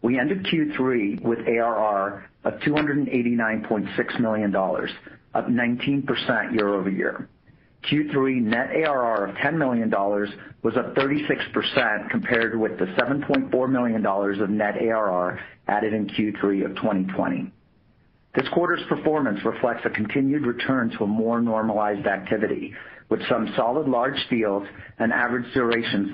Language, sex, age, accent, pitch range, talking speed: English, male, 50-69, American, 105-125 Hz, 125 wpm